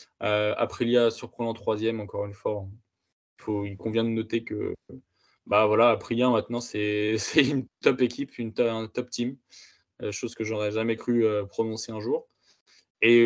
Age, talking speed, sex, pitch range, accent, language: 20-39, 170 wpm, male, 110-125 Hz, French, French